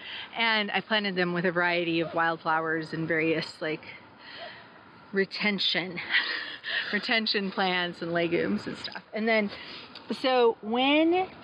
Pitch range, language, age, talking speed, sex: 175-215 Hz, English, 30-49, 120 wpm, female